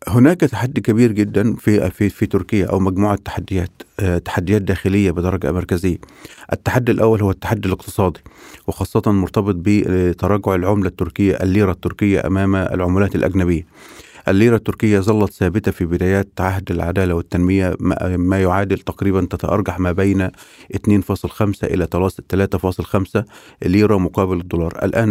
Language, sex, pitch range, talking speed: Arabic, male, 90-105 Hz, 125 wpm